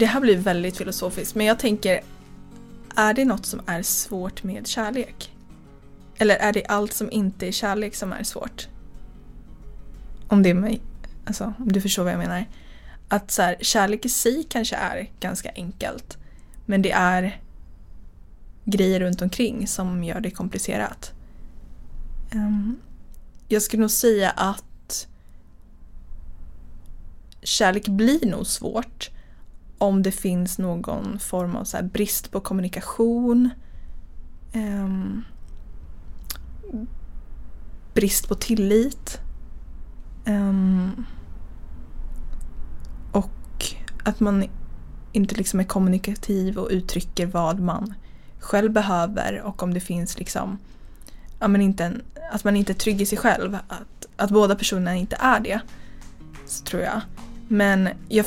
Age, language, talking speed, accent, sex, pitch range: 20-39, Swedish, 125 wpm, native, female, 175-215 Hz